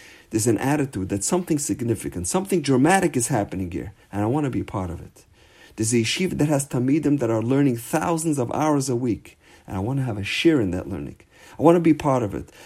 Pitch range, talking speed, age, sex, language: 100-145 Hz, 235 wpm, 50-69, male, English